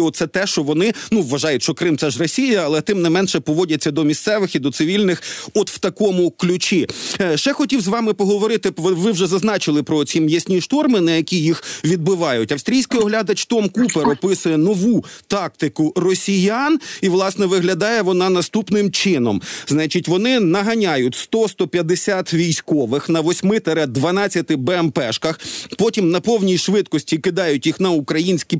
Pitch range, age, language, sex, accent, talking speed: 160-205 Hz, 40-59, Ukrainian, male, native, 150 wpm